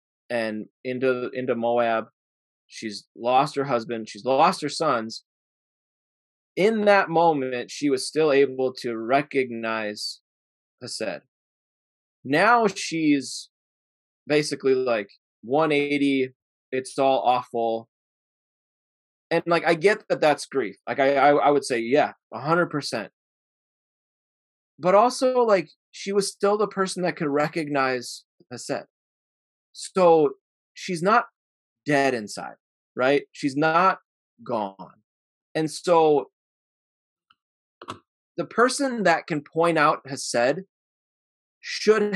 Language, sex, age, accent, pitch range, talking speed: English, male, 20-39, American, 125-165 Hz, 110 wpm